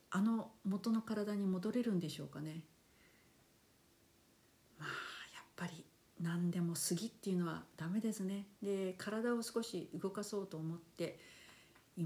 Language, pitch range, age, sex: Japanese, 155-185 Hz, 50-69, female